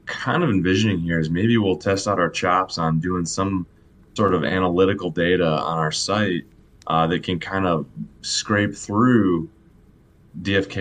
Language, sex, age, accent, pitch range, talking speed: English, male, 20-39, American, 85-100 Hz, 160 wpm